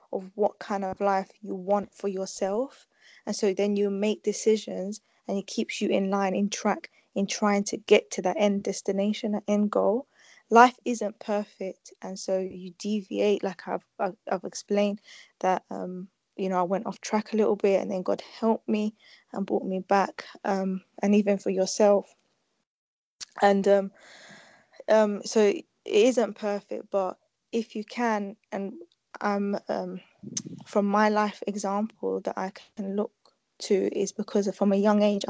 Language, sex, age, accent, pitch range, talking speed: English, female, 20-39, British, 190-210 Hz, 165 wpm